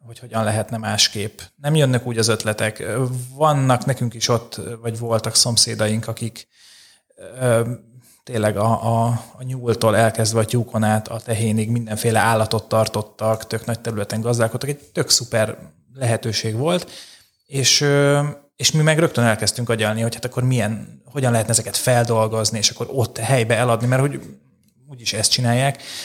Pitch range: 110-125 Hz